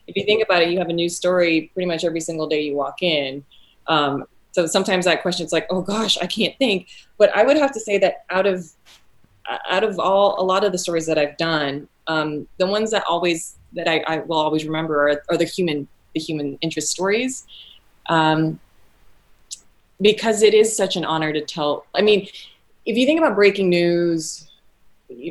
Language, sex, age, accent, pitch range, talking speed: English, female, 20-39, American, 155-185 Hz, 205 wpm